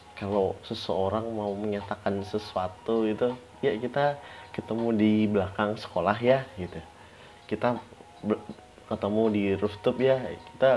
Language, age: Indonesian, 30-49